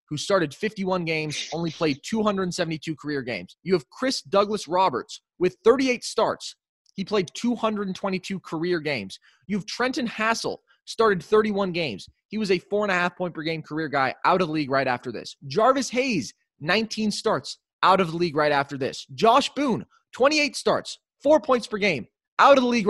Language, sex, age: English, male, 20-39